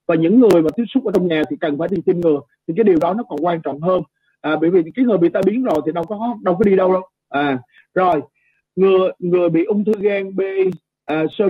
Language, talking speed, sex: Vietnamese, 270 wpm, male